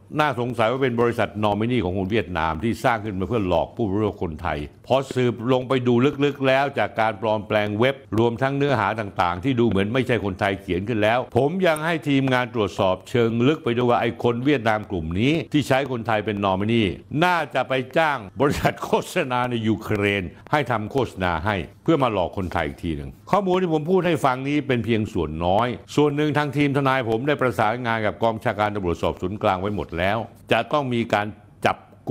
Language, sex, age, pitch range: Thai, male, 60-79, 95-130 Hz